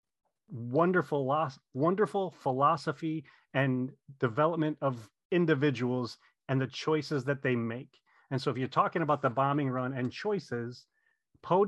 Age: 30-49